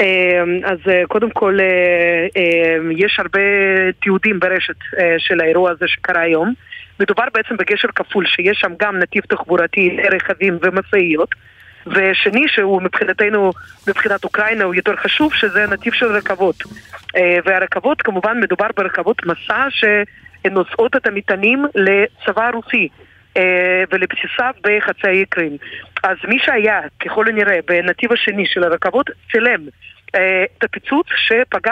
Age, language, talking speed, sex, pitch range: 30-49, Hebrew, 115 wpm, female, 185-215 Hz